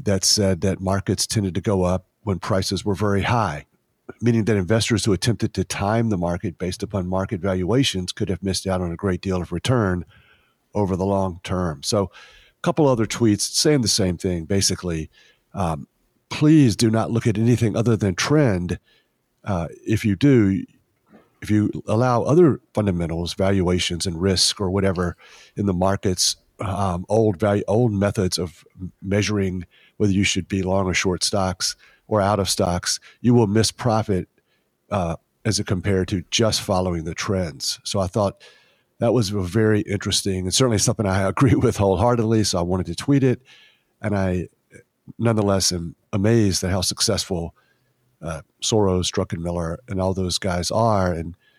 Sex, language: male, English